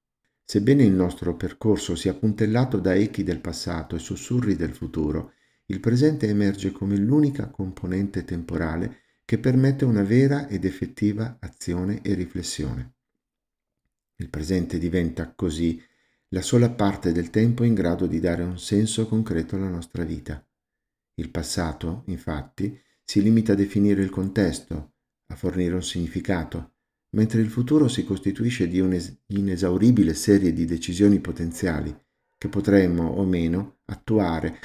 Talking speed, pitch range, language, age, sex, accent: 135 wpm, 85-105 Hz, Italian, 50-69, male, native